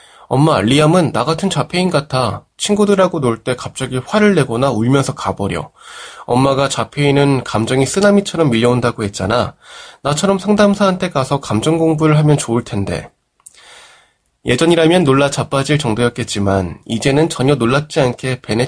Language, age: Korean, 20-39